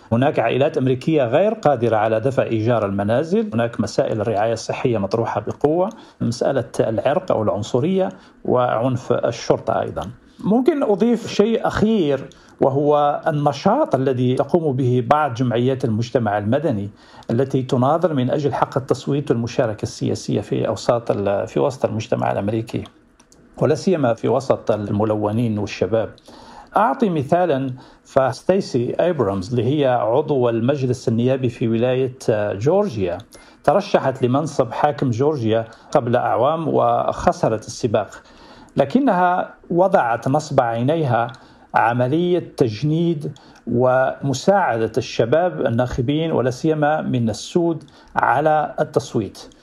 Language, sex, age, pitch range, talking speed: Arabic, male, 50-69, 120-165 Hz, 105 wpm